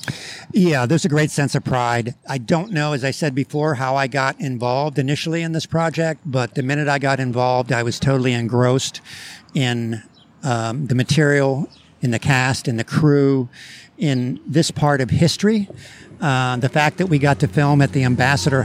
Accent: American